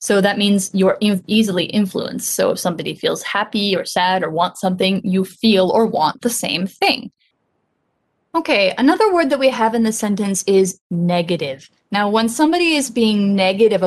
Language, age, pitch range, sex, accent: Chinese, 20-39, 180-230 Hz, female, American